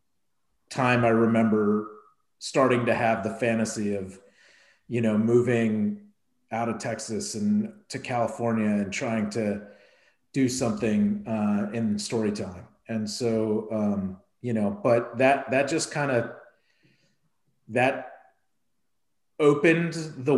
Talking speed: 120 wpm